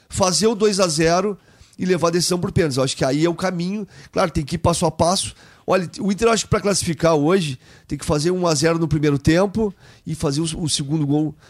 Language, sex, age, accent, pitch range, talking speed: Portuguese, male, 40-59, Brazilian, 145-185 Hz, 230 wpm